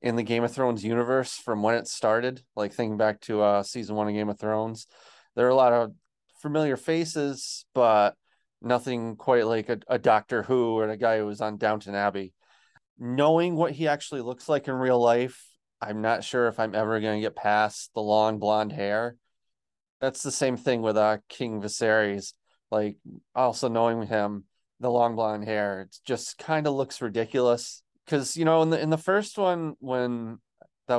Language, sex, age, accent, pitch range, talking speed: English, male, 30-49, American, 105-130 Hz, 195 wpm